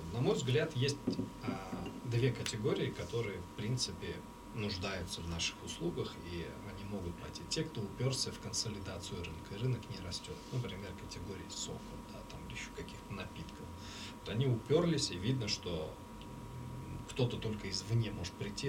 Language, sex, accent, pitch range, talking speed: Russian, male, native, 90-115 Hz, 150 wpm